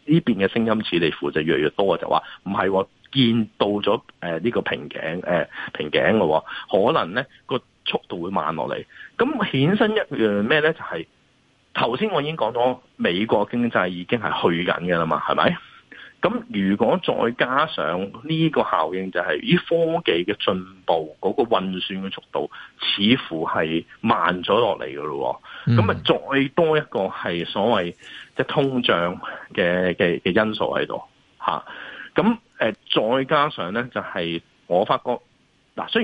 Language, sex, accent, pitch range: Chinese, male, native, 85-125 Hz